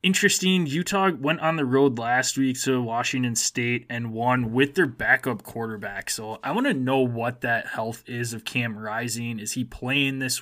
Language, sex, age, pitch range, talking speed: English, male, 20-39, 110-125 Hz, 190 wpm